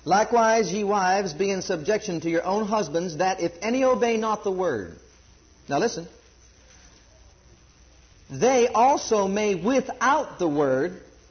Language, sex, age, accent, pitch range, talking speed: English, male, 50-69, American, 180-225 Hz, 135 wpm